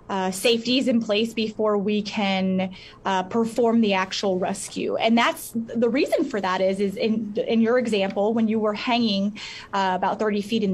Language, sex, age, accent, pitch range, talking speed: English, female, 20-39, American, 200-240 Hz, 185 wpm